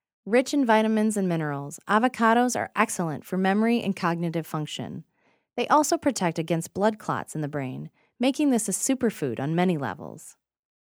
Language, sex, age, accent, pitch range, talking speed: English, female, 30-49, American, 160-230 Hz, 160 wpm